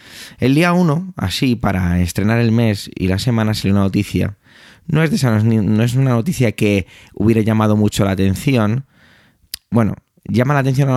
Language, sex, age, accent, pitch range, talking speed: Spanish, male, 20-39, Spanish, 95-120 Hz, 190 wpm